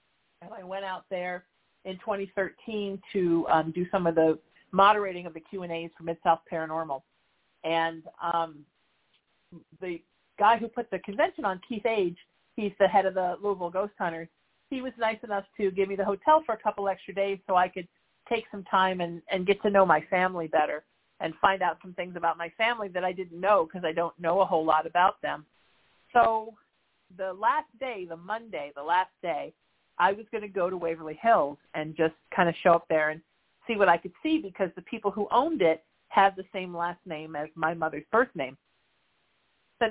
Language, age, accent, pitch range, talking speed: English, 50-69, American, 165-205 Hz, 200 wpm